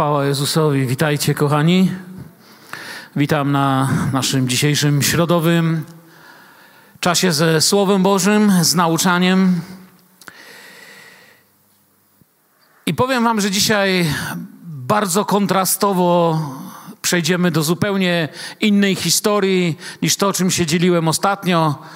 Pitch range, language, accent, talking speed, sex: 165-200 Hz, Polish, native, 95 wpm, male